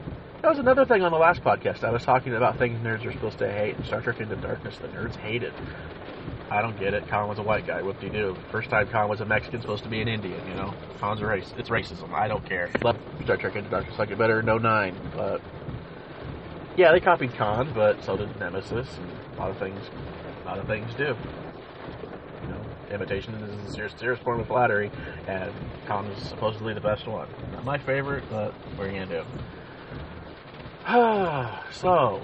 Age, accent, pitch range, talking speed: 30-49, American, 105-140 Hz, 210 wpm